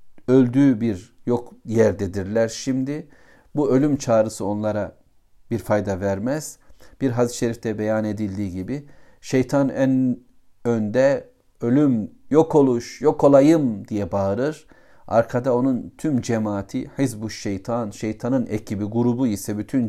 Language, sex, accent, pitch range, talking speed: Turkish, male, native, 100-130 Hz, 115 wpm